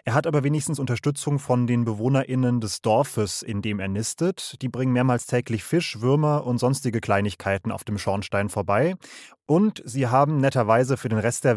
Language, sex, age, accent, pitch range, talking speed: German, male, 30-49, German, 110-140 Hz, 180 wpm